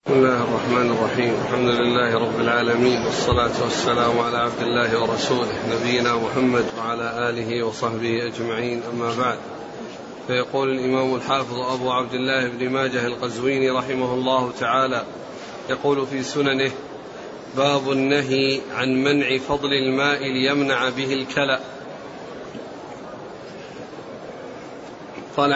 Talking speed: 110 wpm